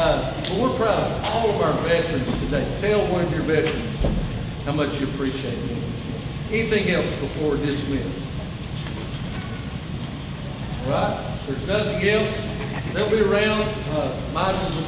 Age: 50-69